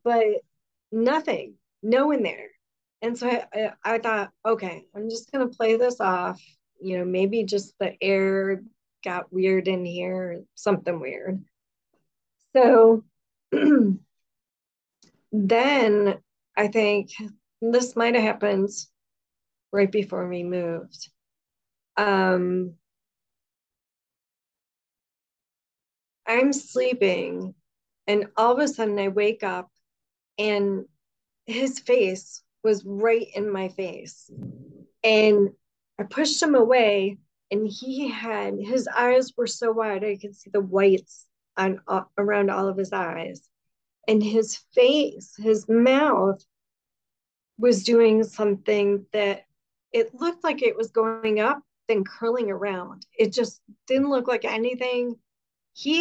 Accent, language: American, English